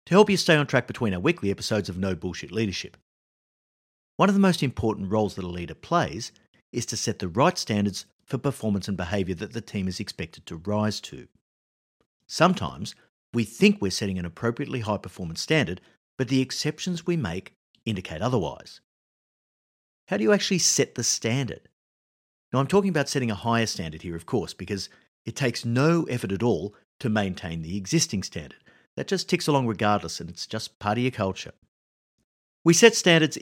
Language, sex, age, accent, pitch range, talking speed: English, male, 50-69, Australian, 95-140 Hz, 185 wpm